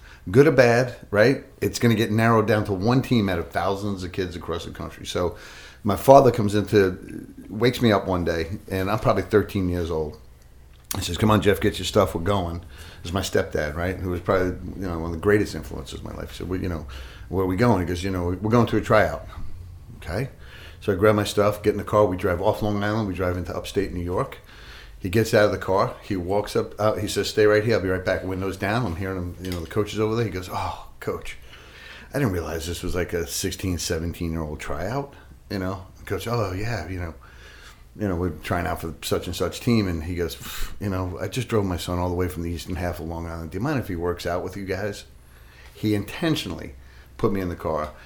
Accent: American